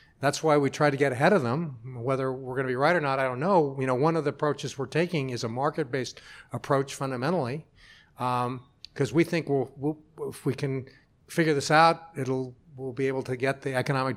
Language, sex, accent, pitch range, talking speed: English, male, American, 125-155 Hz, 225 wpm